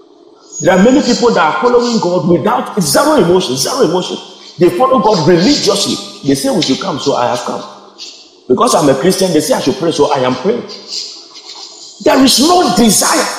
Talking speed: 195 wpm